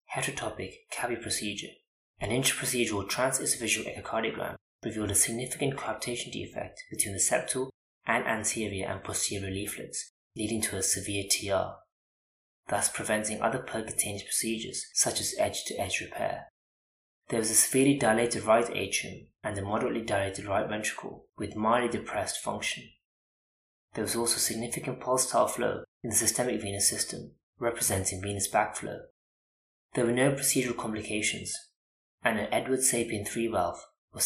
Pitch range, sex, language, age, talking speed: 100-125 Hz, male, English, 20-39, 135 wpm